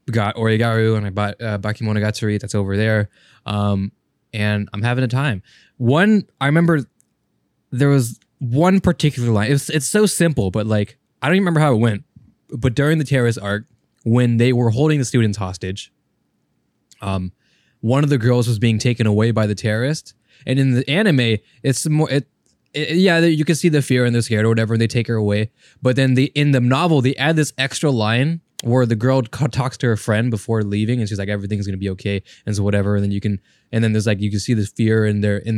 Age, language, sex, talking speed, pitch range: 20-39, English, male, 230 wpm, 110-155 Hz